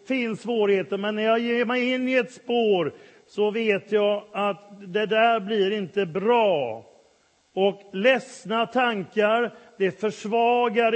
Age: 40-59